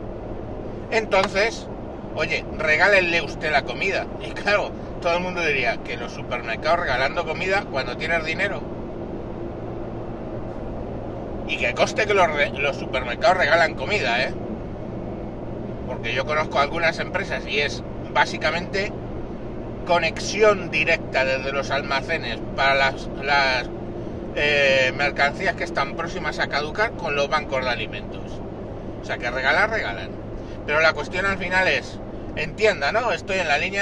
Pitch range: 105-175 Hz